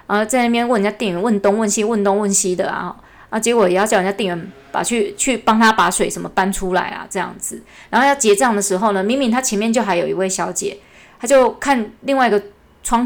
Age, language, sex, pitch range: 20-39, Chinese, female, 190-235 Hz